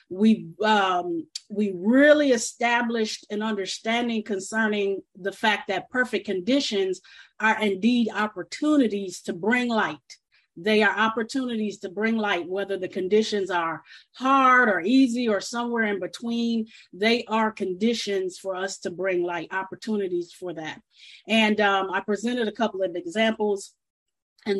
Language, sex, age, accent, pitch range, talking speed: English, female, 40-59, American, 195-230 Hz, 135 wpm